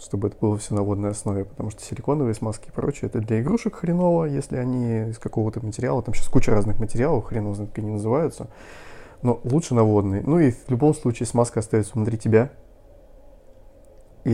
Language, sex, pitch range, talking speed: Russian, male, 105-125 Hz, 185 wpm